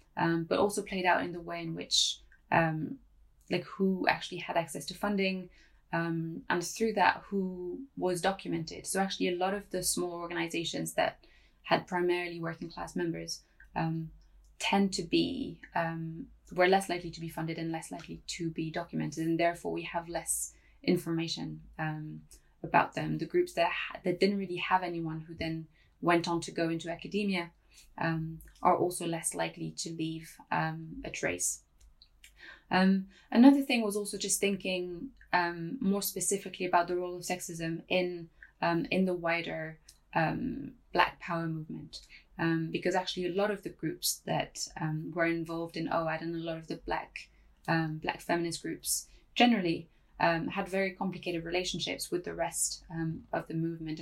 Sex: female